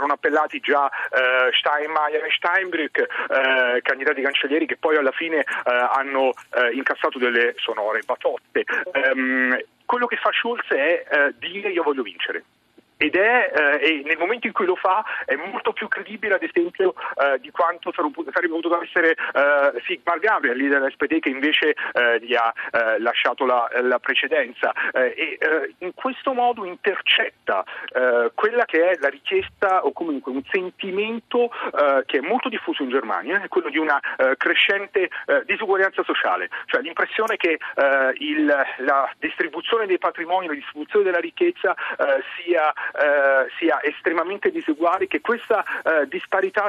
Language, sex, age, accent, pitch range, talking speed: Italian, male, 40-59, native, 150-240 Hz, 155 wpm